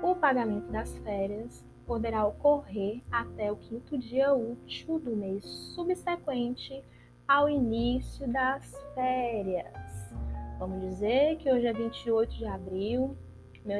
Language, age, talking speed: Portuguese, 20-39, 115 wpm